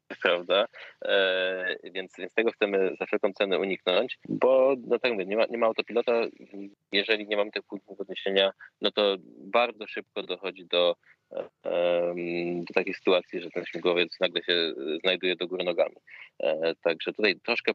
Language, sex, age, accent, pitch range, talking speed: Polish, male, 20-39, native, 90-105 Hz, 160 wpm